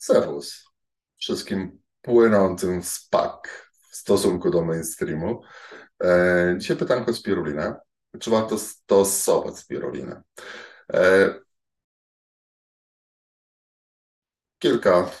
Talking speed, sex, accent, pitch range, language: 65 wpm, male, native, 80-105 Hz, Polish